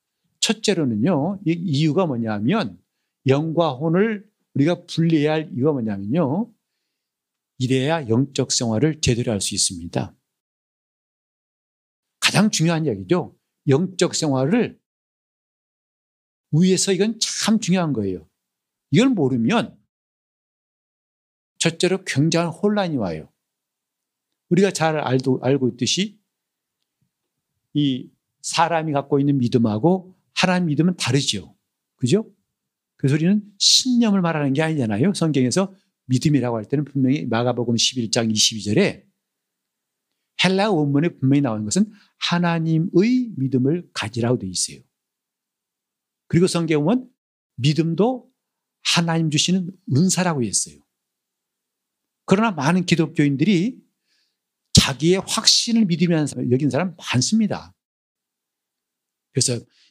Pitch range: 130-190 Hz